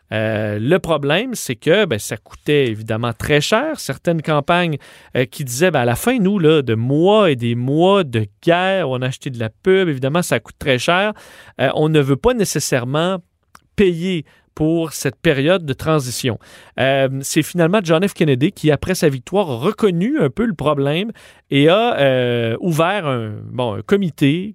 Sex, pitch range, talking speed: male, 135-180 Hz, 180 wpm